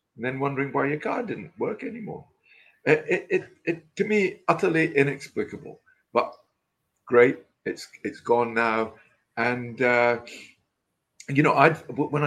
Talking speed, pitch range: 140 wpm, 110-135 Hz